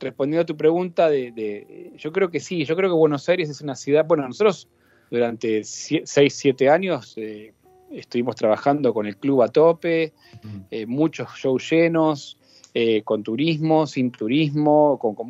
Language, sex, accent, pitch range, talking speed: Spanish, male, Argentinian, 120-160 Hz, 170 wpm